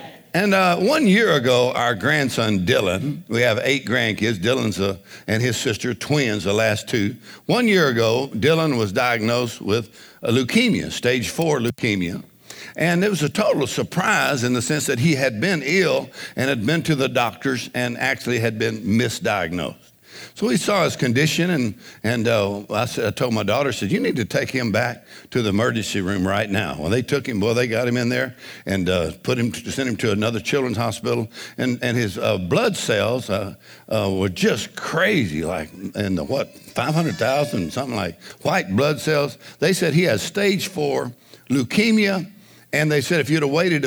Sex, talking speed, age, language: male, 195 wpm, 60-79, English